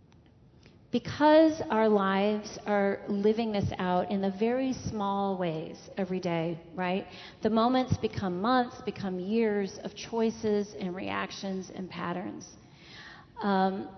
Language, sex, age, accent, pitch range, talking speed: English, female, 40-59, American, 180-225 Hz, 120 wpm